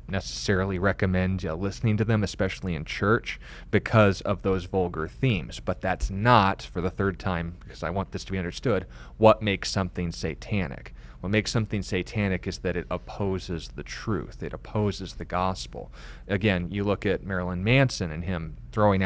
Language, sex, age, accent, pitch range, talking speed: English, male, 30-49, American, 90-105 Hz, 170 wpm